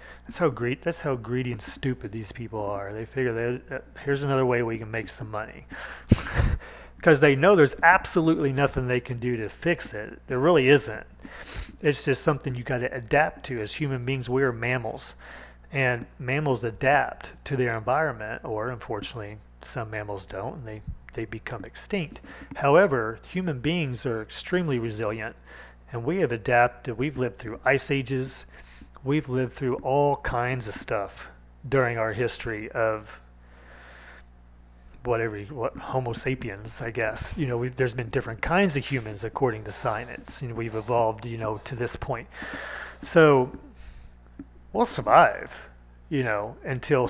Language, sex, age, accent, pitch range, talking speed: English, male, 40-59, American, 110-130 Hz, 160 wpm